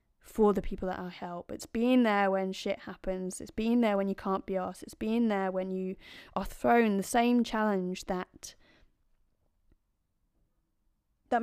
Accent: British